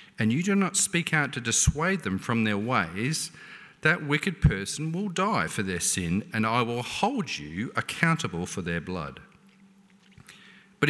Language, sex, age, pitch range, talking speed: English, male, 40-59, 115-195 Hz, 165 wpm